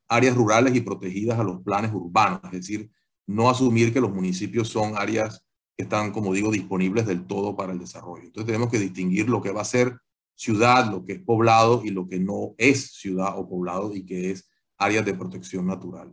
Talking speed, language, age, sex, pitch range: 210 wpm, Spanish, 40-59, male, 95-120 Hz